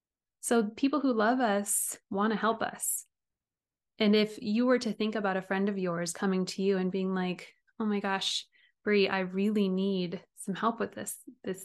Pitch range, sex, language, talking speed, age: 190-225 Hz, female, English, 195 wpm, 20-39